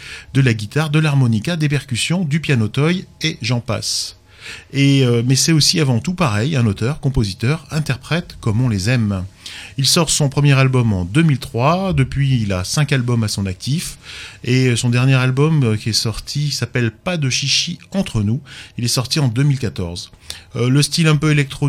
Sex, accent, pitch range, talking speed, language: male, French, 110-145 Hz, 190 wpm, French